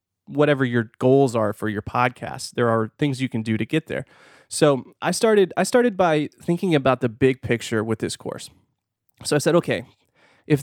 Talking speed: 200 wpm